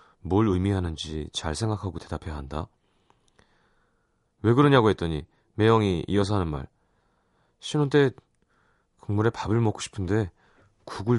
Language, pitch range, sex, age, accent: Korean, 90-130 Hz, male, 30-49, native